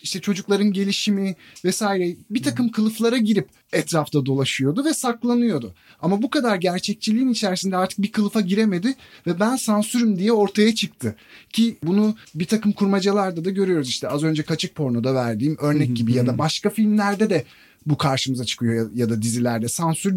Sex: male